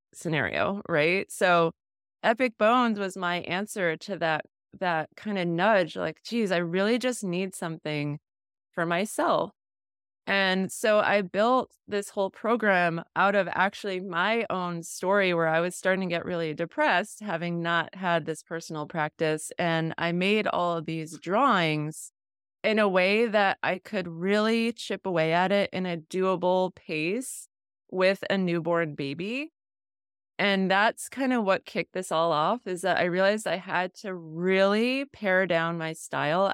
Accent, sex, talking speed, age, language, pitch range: American, female, 160 wpm, 20-39, English, 170-205 Hz